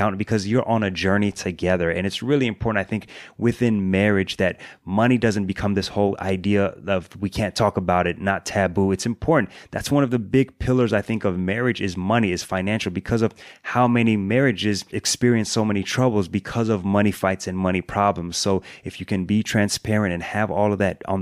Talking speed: 205 wpm